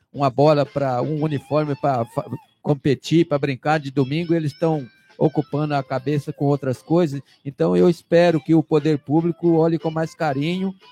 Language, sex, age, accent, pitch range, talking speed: Portuguese, male, 50-69, Brazilian, 145-175 Hz, 165 wpm